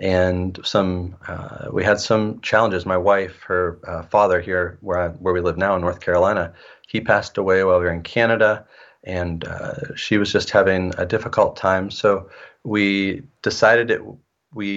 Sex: male